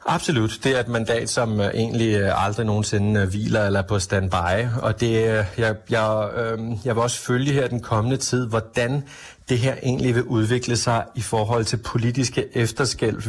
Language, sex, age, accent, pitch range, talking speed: Danish, male, 30-49, native, 105-120 Hz, 170 wpm